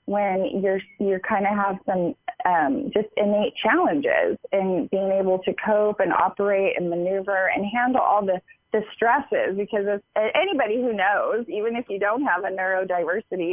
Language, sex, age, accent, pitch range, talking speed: English, female, 20-39, American, 185-230 Hz, 175 wpm